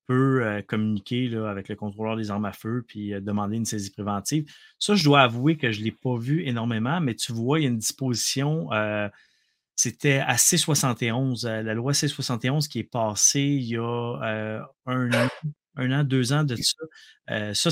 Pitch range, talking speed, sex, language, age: 105-130 Hz, 195 wpm, male, French, 30-49